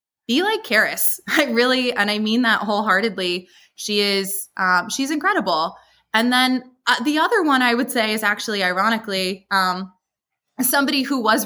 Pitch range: 190-240 Hz